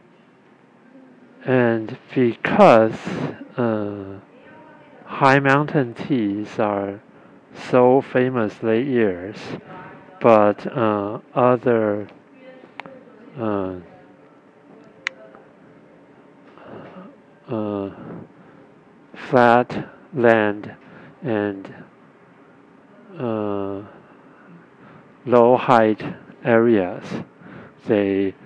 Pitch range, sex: 100-125 Hz, male